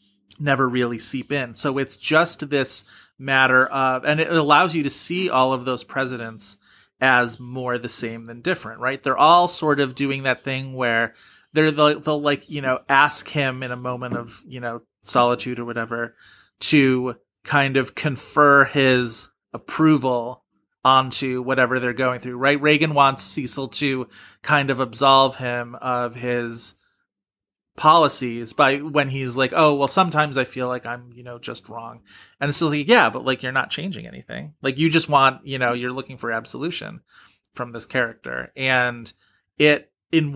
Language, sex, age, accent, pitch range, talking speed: English, male, 30-49, American, 120-140 Hz, 175 wpm